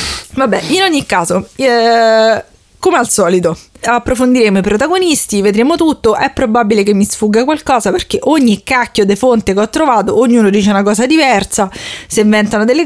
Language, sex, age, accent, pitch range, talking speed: Italian, female, 20-39, native, 195-245 Hz, 165 wpm